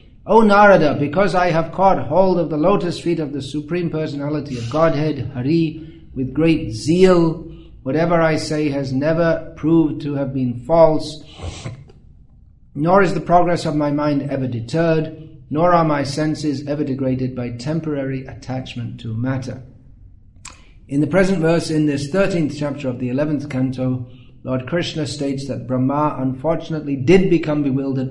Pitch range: 125-160 Hz